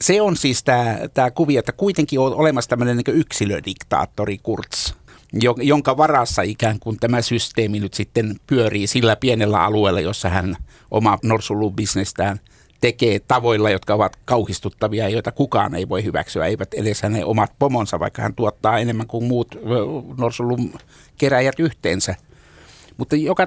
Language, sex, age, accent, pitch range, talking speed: Finnish, male, 60-79, native, 110-145 Hz, 140 wpm